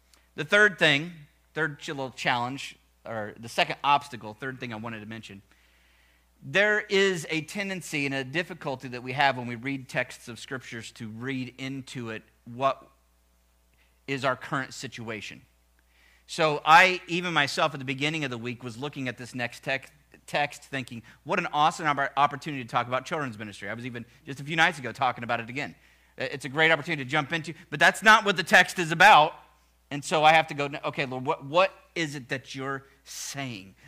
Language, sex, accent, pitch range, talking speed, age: English, male, American, 110-150 Hz, 195 wpm, 40-59